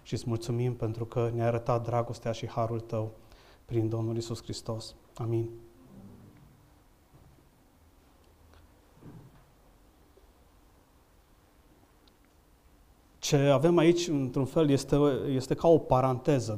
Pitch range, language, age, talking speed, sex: 120-150 Hz, Romanian, 30-49, 95 wpm, male